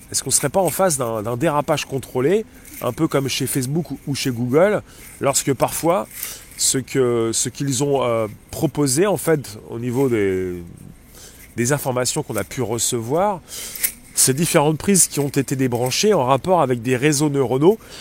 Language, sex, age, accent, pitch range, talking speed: French, male, 30-49, French, 120-155 Hz, 175 wpm